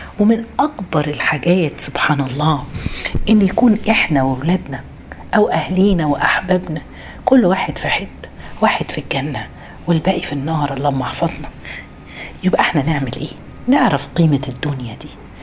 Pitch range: 130-180 Hz